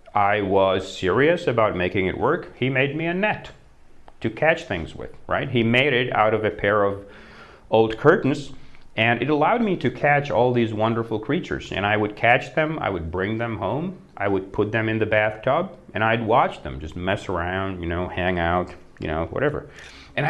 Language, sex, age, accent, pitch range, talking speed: Czech, male, 40-59, American, 90-115 Hz, 205 wpm